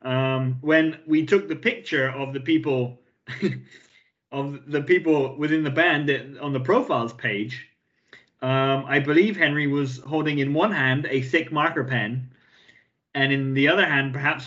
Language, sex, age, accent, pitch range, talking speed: English, male, 30-49, British, 130-180 Hz, 160 wpm